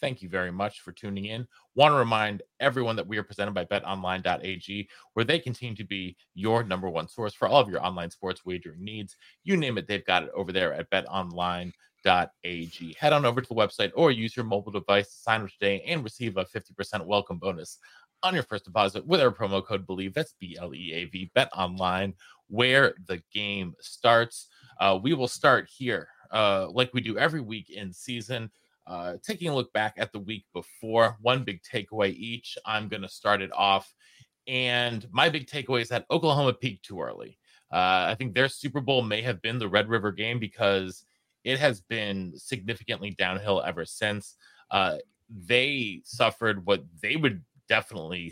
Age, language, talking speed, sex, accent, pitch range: 30-49, English, 190 wpm, male, American, 95-115 Hz